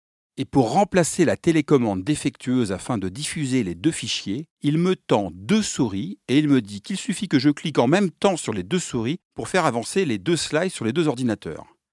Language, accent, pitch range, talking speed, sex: French, French, 110-155 Hz, 215 wpm, male